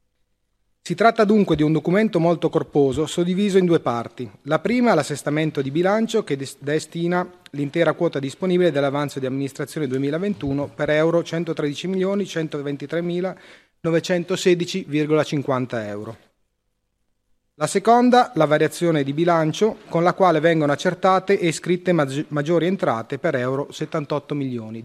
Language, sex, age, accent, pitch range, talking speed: Italian, male, 30-49, native, 140-175 Hz, 120 wpm